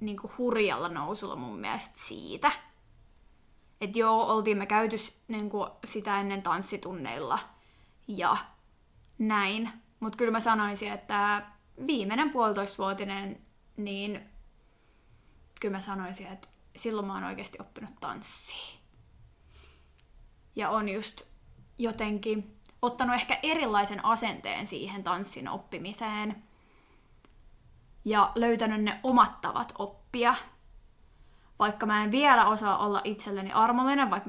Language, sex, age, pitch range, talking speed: Finnish, female, 20-39, 200-230 Hz, 105 wpm